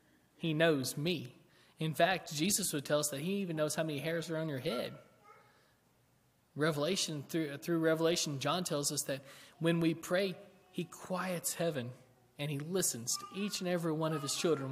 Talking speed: 185 wpm